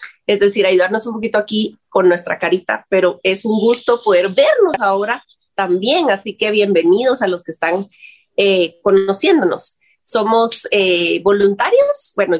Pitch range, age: 195-250 Hz, 30-49